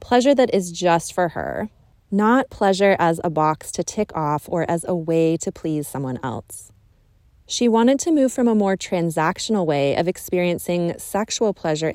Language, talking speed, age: English, 175 wpm, 20-39